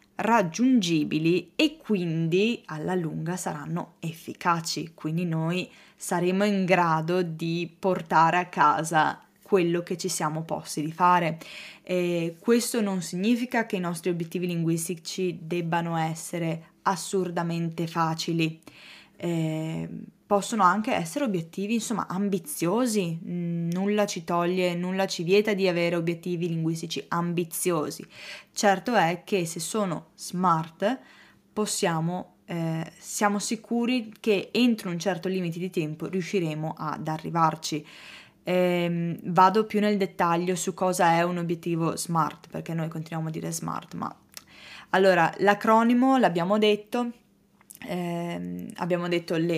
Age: 10-29